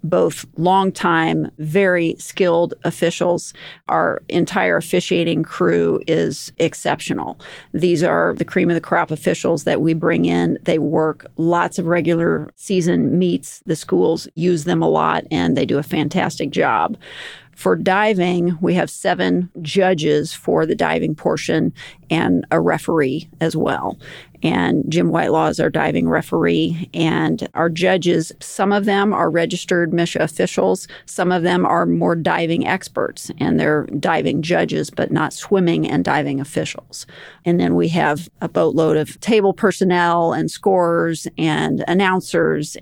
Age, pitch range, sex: 40-59, 155-180 Hz, female